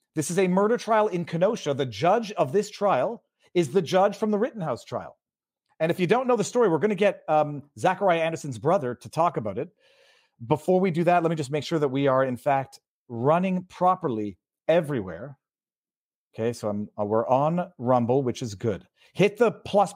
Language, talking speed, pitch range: English, 205 wpm, 135-170 Hz